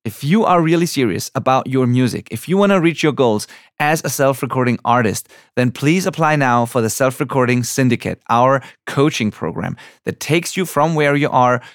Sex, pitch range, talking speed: male, 125-165 Hz, 190 wpm